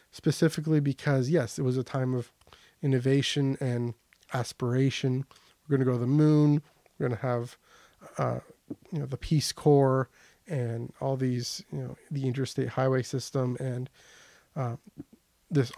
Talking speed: 150 wpm